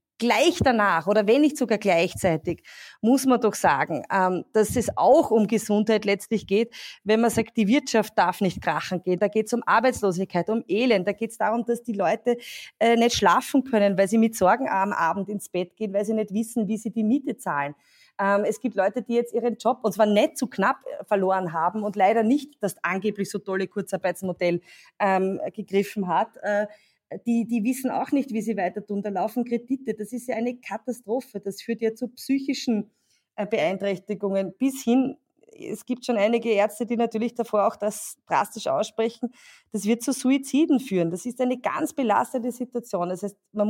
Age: 20-39